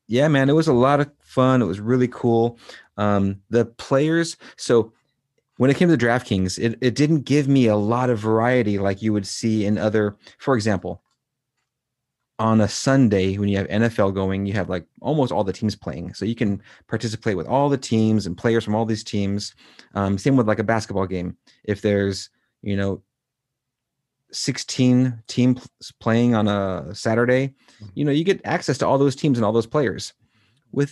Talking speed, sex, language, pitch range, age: 195 wpm, male, English, 100-130 Hz, 30-49